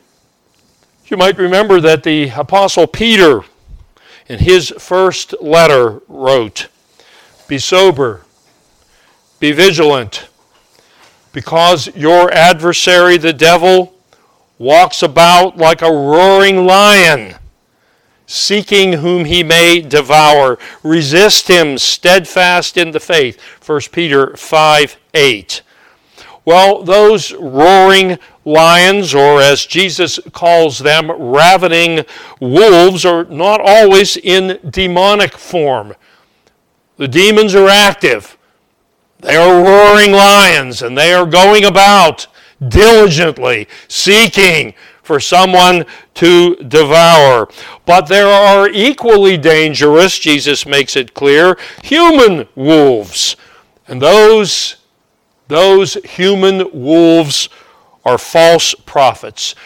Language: English